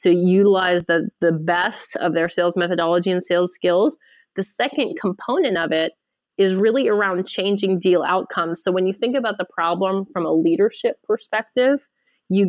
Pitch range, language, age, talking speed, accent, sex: 175-225 Hz, English, 30-49, 170 wpm, American, female